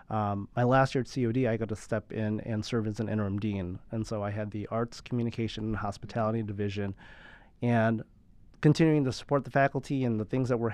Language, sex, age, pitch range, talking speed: English, male, 30-49, 105-125 Hz, 210 wpm